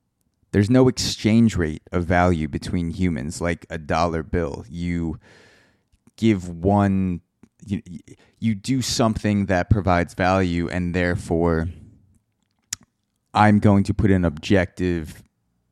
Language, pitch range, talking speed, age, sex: English, 85-105 Hz, 115 wpm, 20-39, male